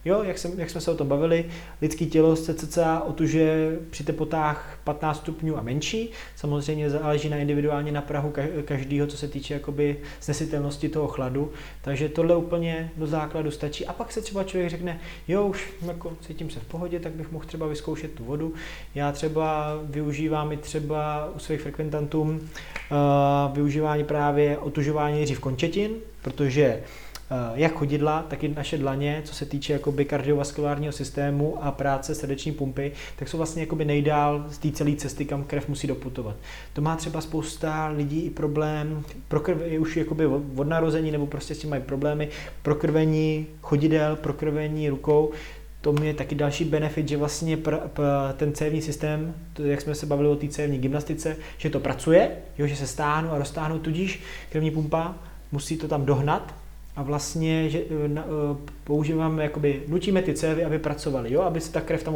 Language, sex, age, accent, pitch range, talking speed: Czech, male, 20-39, native, 145-160 Hz, 175 wpm